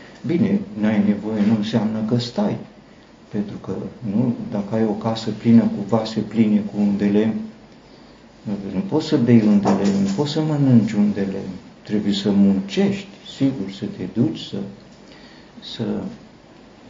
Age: 50-69